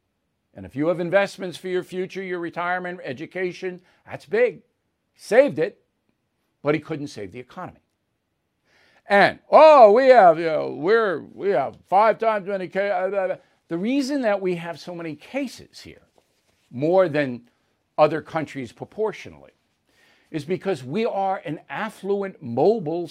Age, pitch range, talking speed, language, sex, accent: 60-79, 160-230 Hz, 145 wpm, English, male, American